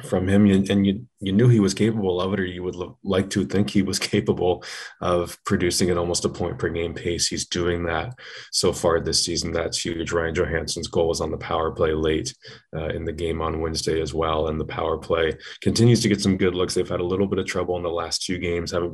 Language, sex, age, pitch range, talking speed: English, male, 20-39, 85-95 Hz, 250 wpm